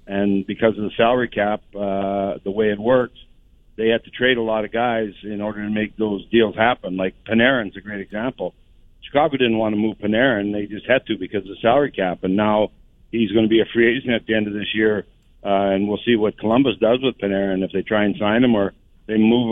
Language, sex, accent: English, male, American